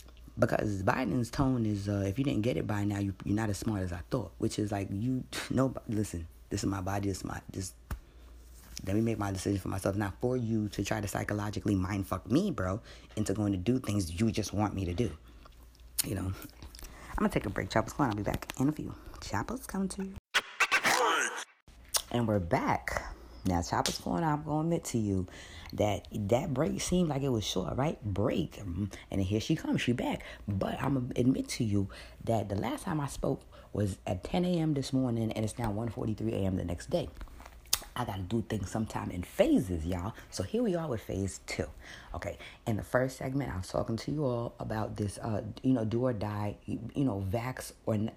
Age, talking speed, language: 20-39, 220 wpm, English